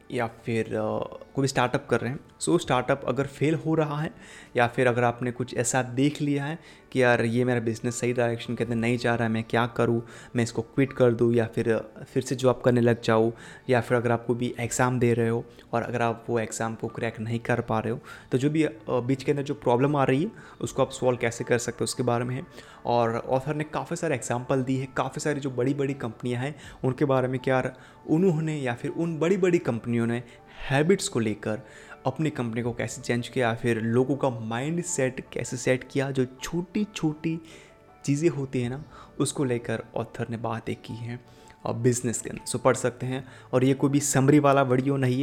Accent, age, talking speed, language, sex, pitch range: native, 20-39, 225 wpm, Hindi, male, 115-140 Hz